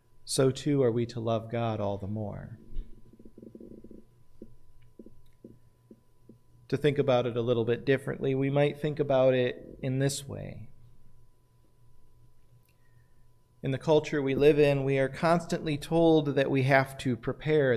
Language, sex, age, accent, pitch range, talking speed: English, male, 40-59, American, 120-140 Hz, 140 wpm